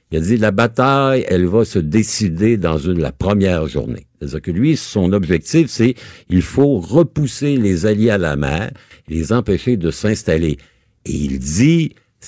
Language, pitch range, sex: French, 85-120 Hz, male